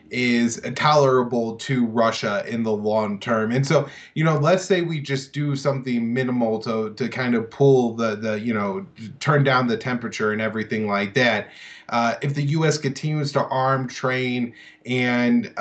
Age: 20-39